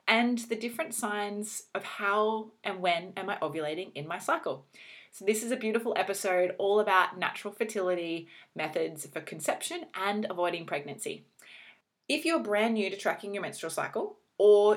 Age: 20-39